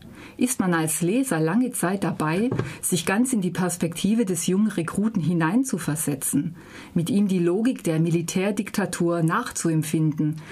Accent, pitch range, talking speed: German, 160-205 Hz, 130 wpm